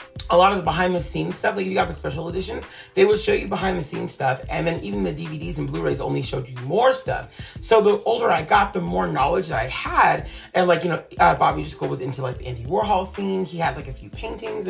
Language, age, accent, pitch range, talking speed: English, 30-49, American, 130-180 Hz, 265 wpm